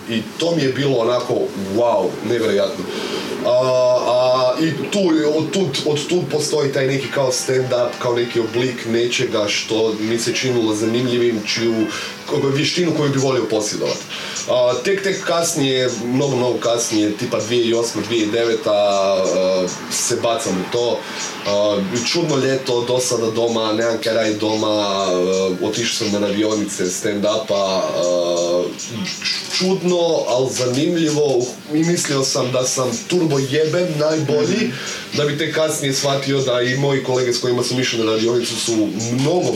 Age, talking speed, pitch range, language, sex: 20-39, 145 wpm, 110-145 Hz, Croatian, male